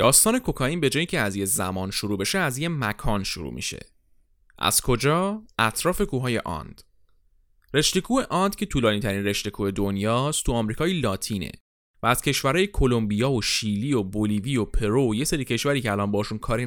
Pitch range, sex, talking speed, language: 100-165 Hz, male, 175 wpm, Persian